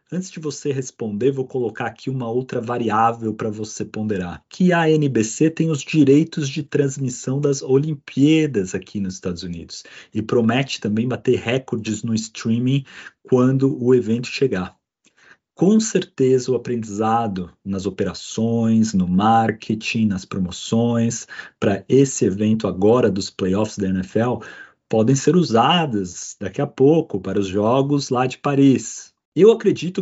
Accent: Brazilian